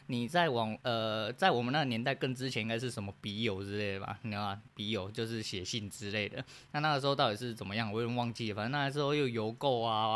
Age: 20-39